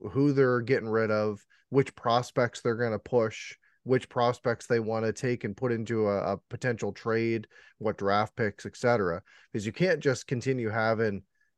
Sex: male